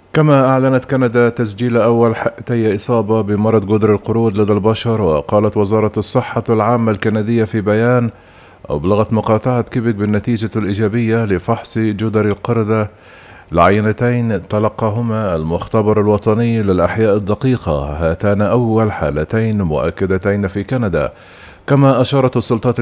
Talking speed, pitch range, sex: 110 wpm, 105-115 Hz, male